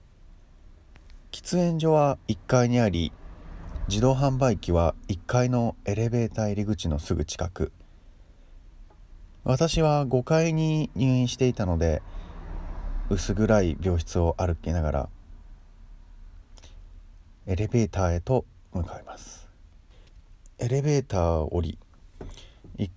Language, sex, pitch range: Japanese, male, 80-105 Hz